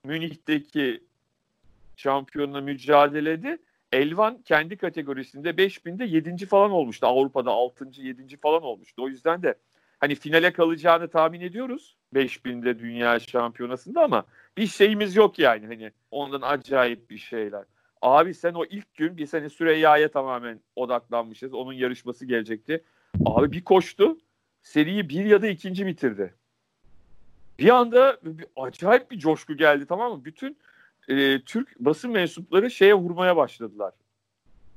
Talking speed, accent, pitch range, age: 130 wpm, native, 125-180 Hz, 40-59